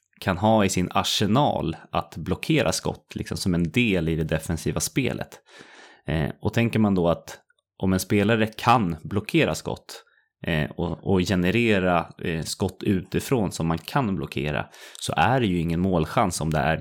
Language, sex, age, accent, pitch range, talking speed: English, male, 20-39, Swedish, 80-100 Hz, 155 wpm